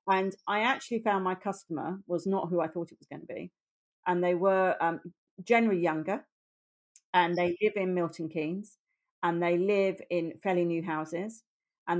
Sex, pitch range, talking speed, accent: female, 170-195 Hz, 180 wpm, British